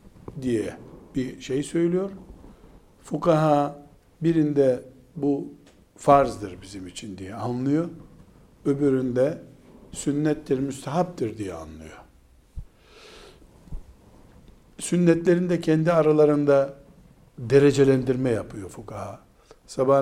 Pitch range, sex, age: 115-155 Hz, male, 60-79